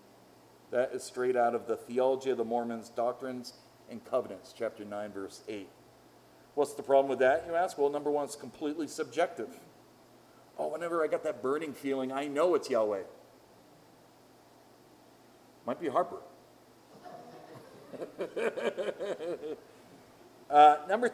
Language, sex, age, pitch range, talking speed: English, male, 40-59, 130-205 Hz, 130 wpm